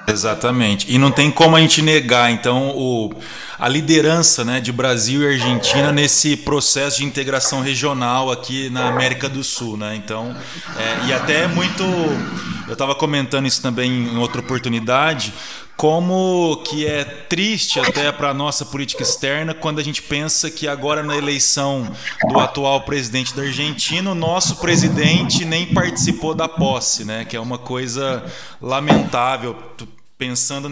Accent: Brazilian